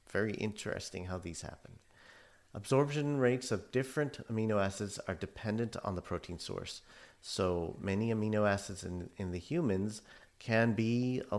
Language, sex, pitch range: English, male, 90-110 Hz